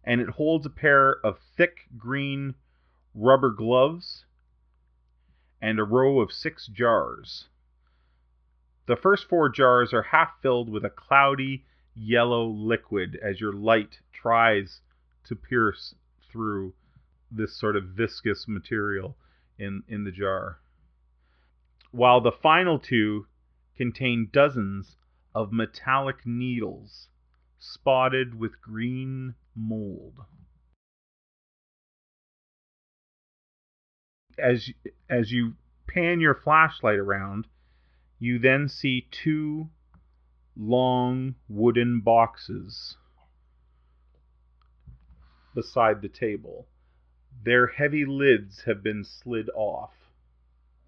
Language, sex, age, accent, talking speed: English, male, 30-49, American, 95 wpm